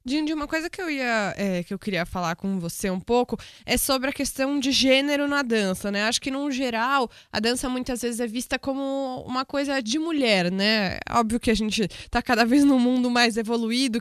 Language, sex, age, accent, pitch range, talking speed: Portuguese, female, 20-39, Brazilian, 210-265 Hz, 205 wpm